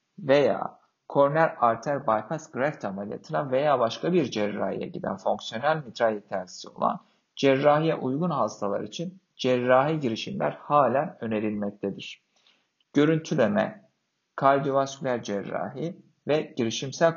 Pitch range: 110-155 Hz